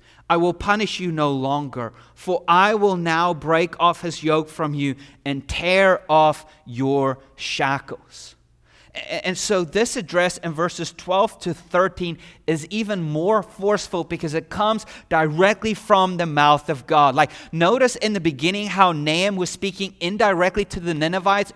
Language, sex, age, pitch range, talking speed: English, male, 30-49, 160-210 Hz, 155 wpm